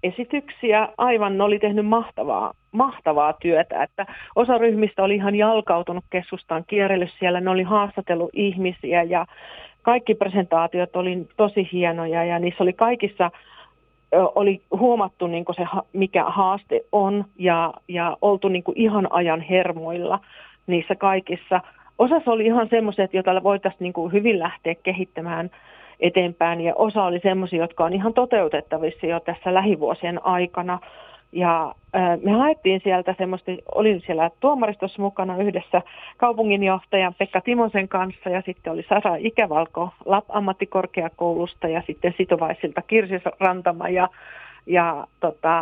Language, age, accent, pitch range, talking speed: Finnish, 40-59, native, 175-205 Hz, 125 wpm